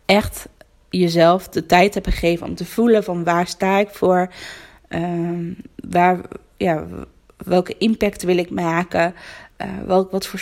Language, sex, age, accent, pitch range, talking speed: Dutch, female, 20-39, Dutch, 170-195 Hz, 150 wpm